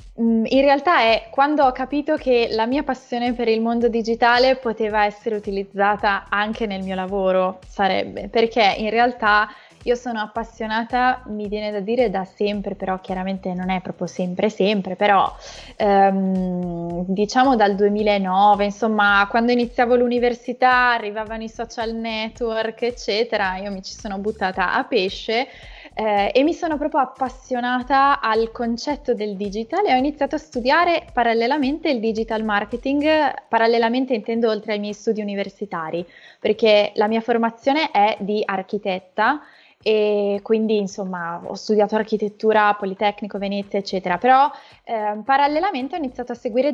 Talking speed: 140 wpm